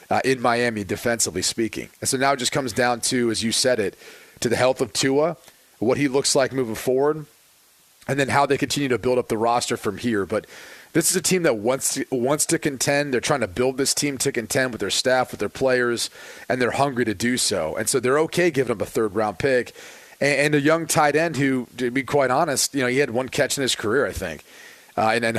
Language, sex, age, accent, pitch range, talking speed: English, male, 30-49, American, 120-145 Hz, 250 wpm